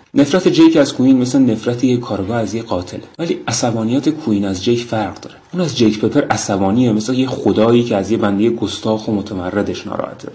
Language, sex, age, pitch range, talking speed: Persian, male, 30-49, 100-115 Hz, 195 wpm